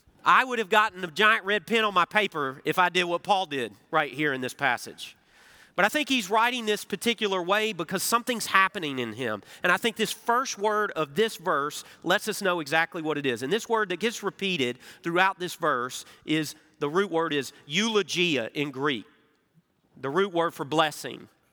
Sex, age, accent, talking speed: male, 40-59, American, 205 wpm